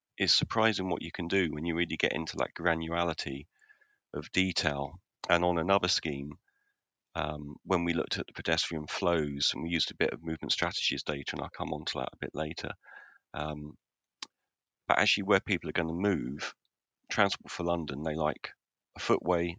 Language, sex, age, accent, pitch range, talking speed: English, male, 40-59, British, 75-90 Hz, 185 wpm